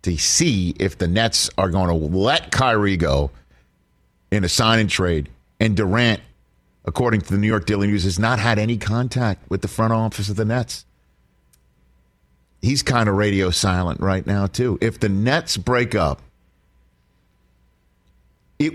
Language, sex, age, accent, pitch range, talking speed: English, male, 50-69, American, 70-115 Hz, 160 wpm